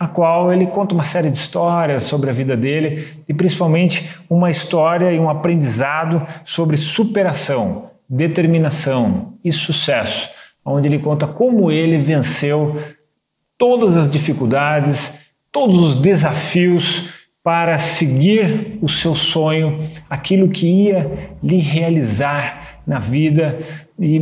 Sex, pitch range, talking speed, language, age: male, 140-170 Hz, 120 wpm, Portuguese, 40-59